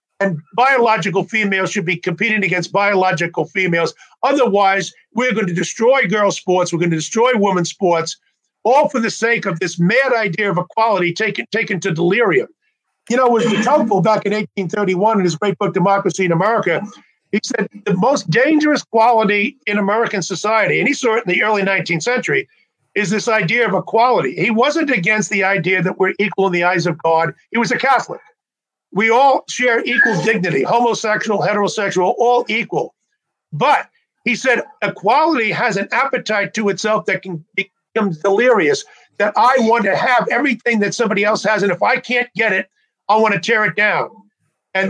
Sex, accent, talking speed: male, American, 180 wpm